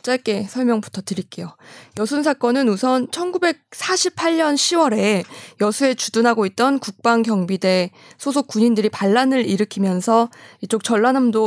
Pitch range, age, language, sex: 200-255 Hz, 20-39, Korean, female